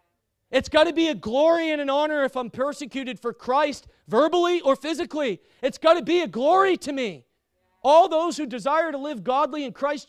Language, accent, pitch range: English, American, 230-310 Hz